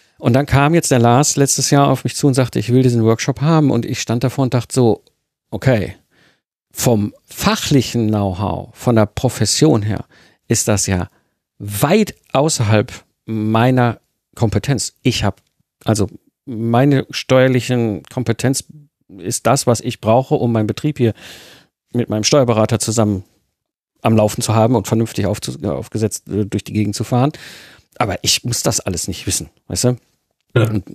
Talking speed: 160 wpm